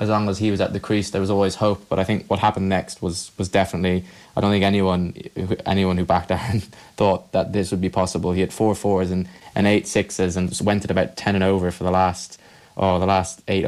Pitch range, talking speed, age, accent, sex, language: 95-105 Hz, 260 wpm, 20-39, British, male, English